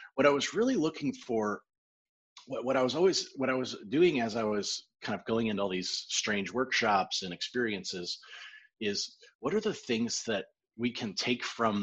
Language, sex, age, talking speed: English, male, 30-49, 195 wpm